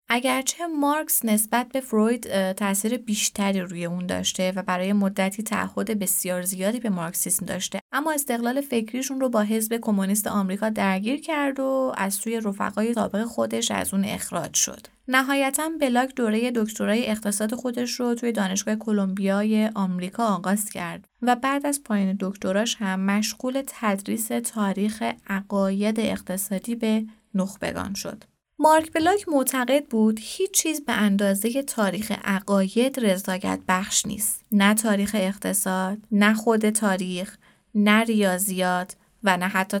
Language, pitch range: Persian, 195-240 Hz